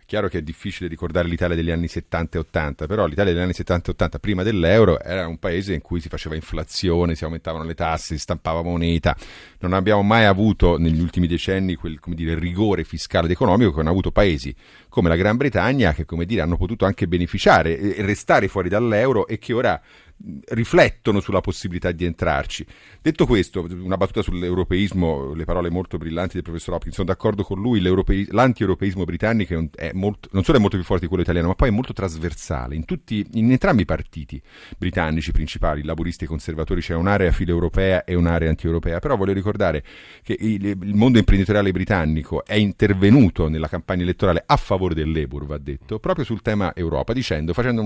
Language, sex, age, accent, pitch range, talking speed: Italian, male, 40-59, native, 85-100 Hz, 190 wpm